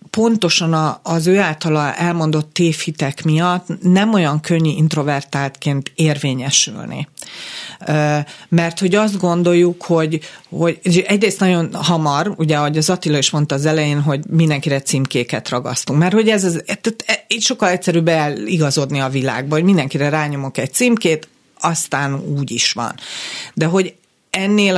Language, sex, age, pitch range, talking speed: Hungarian, female, 40-59, 150-180 Hz, 130 wpm